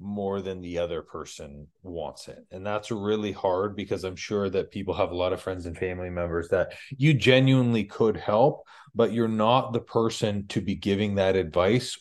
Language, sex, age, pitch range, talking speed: English, male, 30-49, 100-125 Hz, 195 wpm